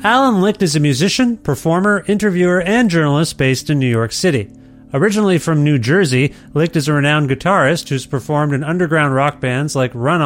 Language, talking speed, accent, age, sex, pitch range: English, 180 wpm, American, 40-59, male, 135-175 Hz